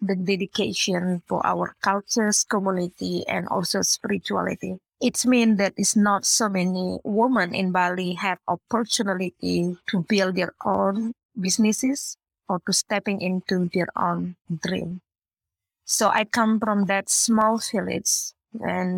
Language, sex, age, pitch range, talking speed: English, female, 20-39, 180-210 Hz, 130 wpm